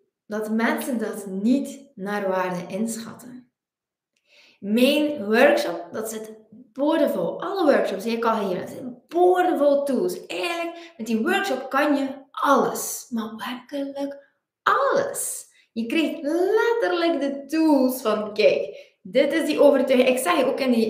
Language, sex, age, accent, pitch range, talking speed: Dutch, female, 20-39, Dutch, 215-285 Hz, 135 wpm